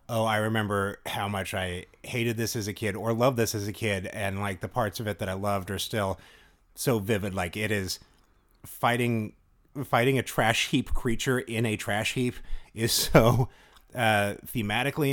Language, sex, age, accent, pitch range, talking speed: English, male, 30-49, American, 105-130 Hz, 185 wpm